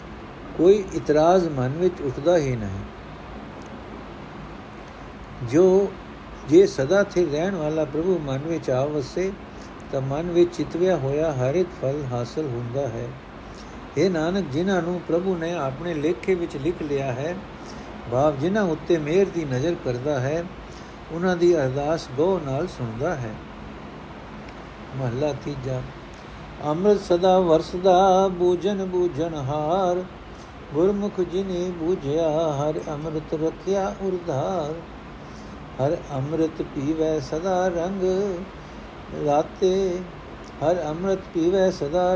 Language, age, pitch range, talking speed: Punjabi, 60-79, 140-180 Hz, 105 wpm